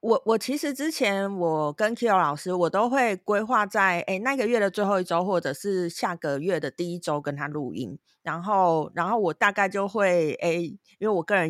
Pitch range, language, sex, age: 170-240 Hz, Chinese, female, 30-49